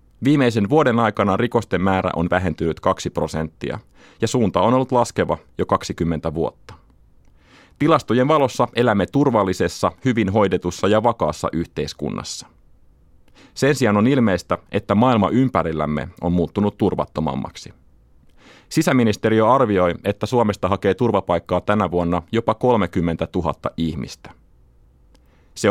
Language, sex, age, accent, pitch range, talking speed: Finnish, male, 30-49, native, 80-110 Hz, 115 wpm